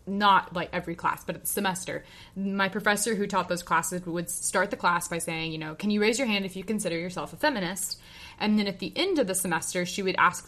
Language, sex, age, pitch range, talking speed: English, female, 20-39, 175-210 Hz, 250 wpm